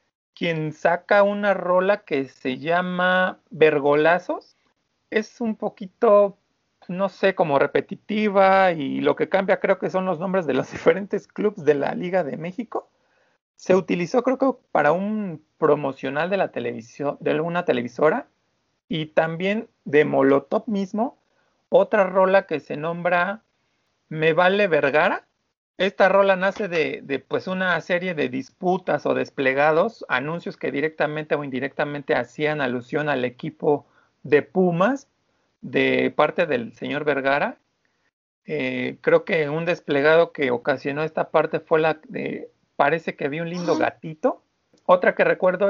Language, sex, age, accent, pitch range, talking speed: Spanish, male, 40-59, Mexican, 150-195 Hz, 140 wpm